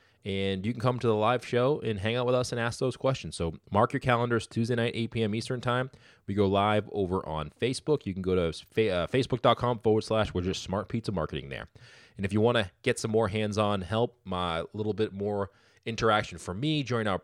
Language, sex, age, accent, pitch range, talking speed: English, male, 20-39, American, 90-110 Hz, 230 wpm